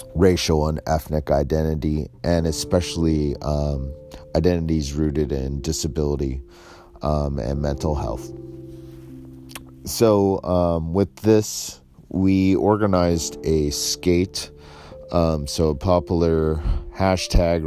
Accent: American